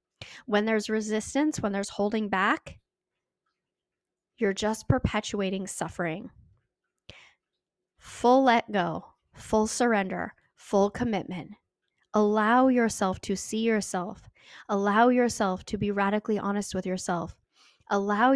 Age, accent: 10-29, American